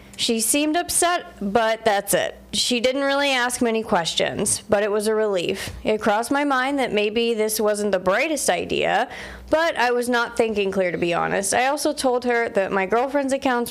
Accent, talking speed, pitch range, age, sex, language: American, 195 wpm, 195-245 Hz, 30-49, female, English